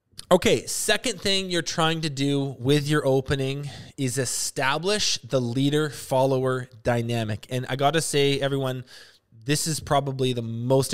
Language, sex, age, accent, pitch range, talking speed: English, male, 20-39, American, 125-160 Hz, 145 wpm